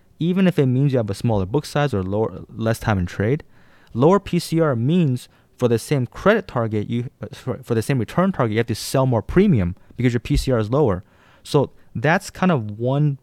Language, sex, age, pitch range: English, male, 20-39, 95-130 Hz